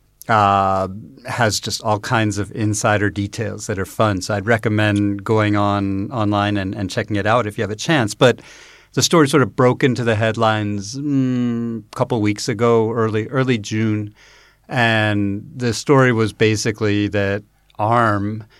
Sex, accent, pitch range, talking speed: male, American, 105-120 Hz, 165 wpm